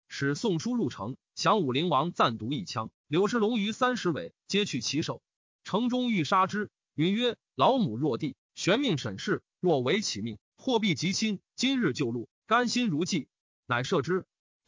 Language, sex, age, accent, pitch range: Chinese, male, 30-49, native, 150-225 Hz